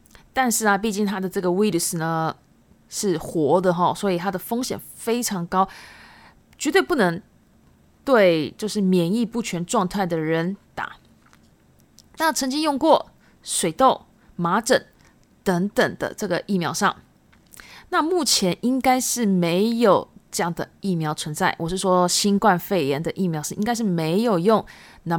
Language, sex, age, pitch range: Japanese, female, 20-39, 175-230 Hz